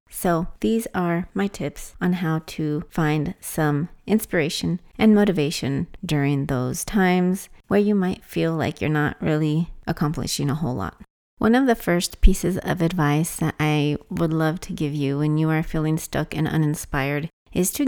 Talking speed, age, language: 170 wpm, 30-49, English